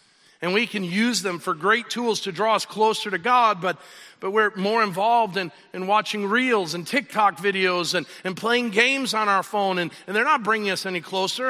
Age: 50-69